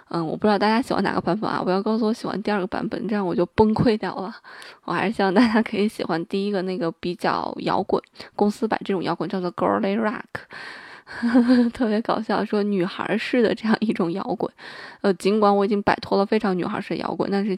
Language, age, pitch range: Chinese, 20-39, 185-220 Hz